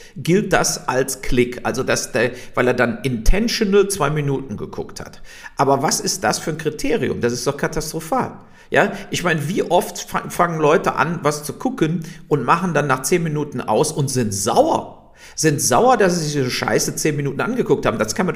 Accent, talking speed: German, 205 wpm